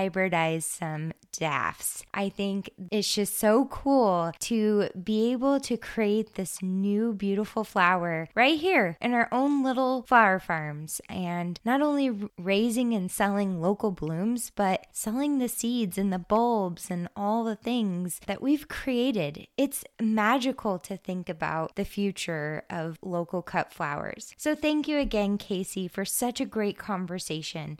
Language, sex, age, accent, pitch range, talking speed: English, female, 20-39, American, 185-245 Hz, 150 wpm